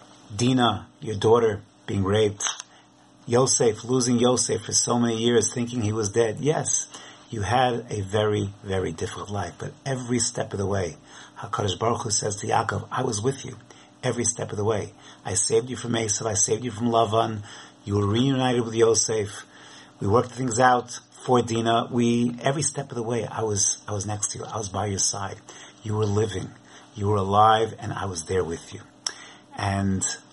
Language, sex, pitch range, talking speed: English, male, 105-125 Hz, 190 wpm